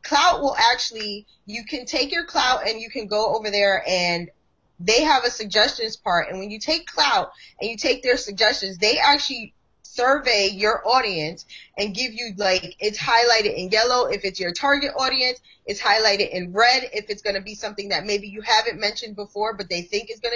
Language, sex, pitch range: English, female, 200-250 Hz